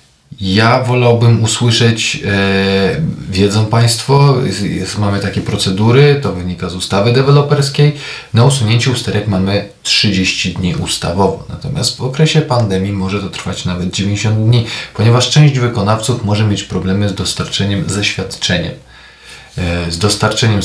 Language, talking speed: Polish, 130 wpm